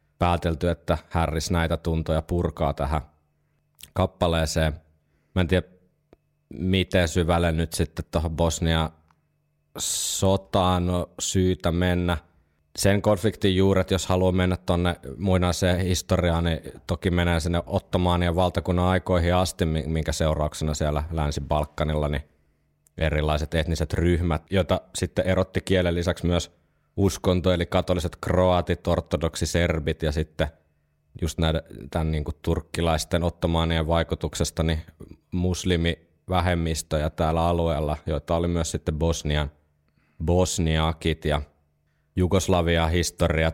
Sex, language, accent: male, Finnish, native